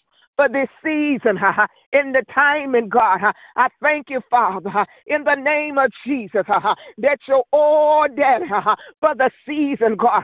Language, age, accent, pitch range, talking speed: English, 50-69, American, 260-305 Hz, 165 wpm